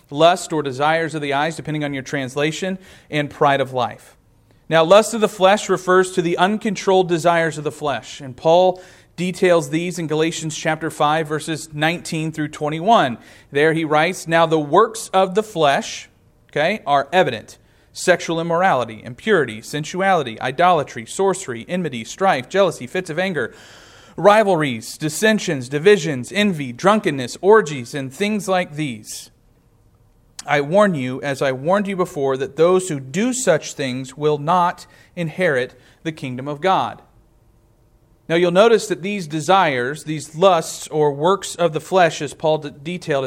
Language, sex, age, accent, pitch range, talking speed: English, male, 40-59, American, 135-180 Hz, 155 wpm